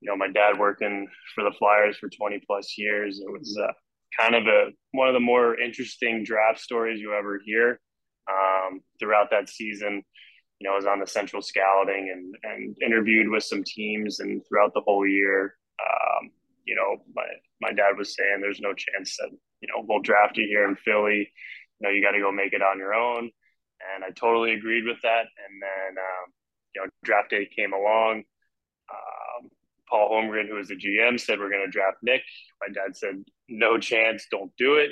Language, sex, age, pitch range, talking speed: English, male, 20-39, 100-120 Hz, 200 wpm